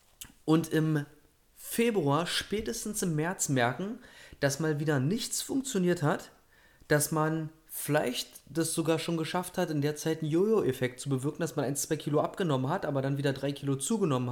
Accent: German